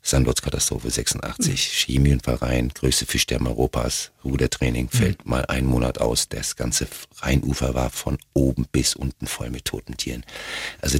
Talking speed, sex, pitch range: 135 wpm, male, 65-80 Hz